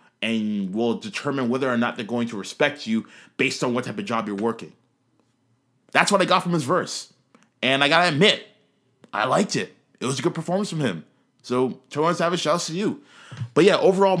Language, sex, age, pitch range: English, male, 20-39, 115-145 Hz